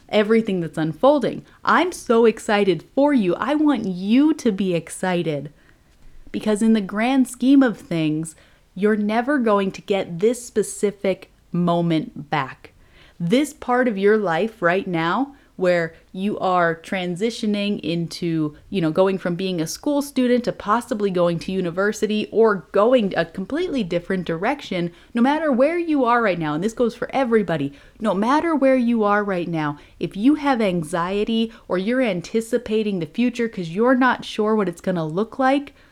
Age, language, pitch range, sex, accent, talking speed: 30-49, English, 175-245 Hz, female, American, 165 wpm